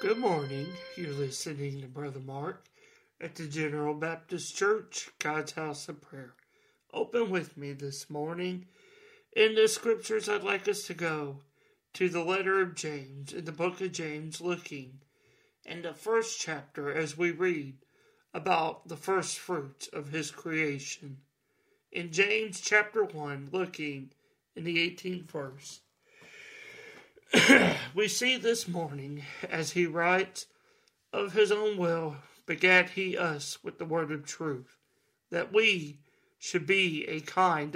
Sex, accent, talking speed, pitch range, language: male, American, 140 wpm, 150-210 Hz, English